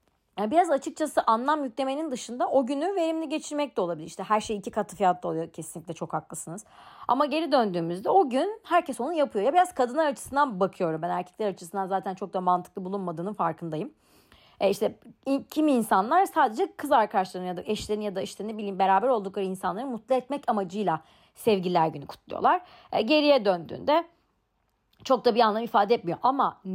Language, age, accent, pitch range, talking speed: Turkish, 40-59, native, 180-270 Hz, 175 wpm